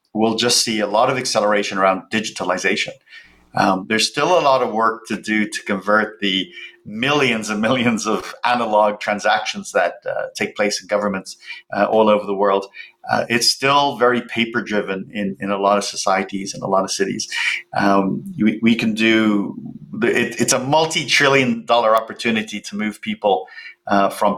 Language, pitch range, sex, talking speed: English, 100-125 Hz, male, 175 wpm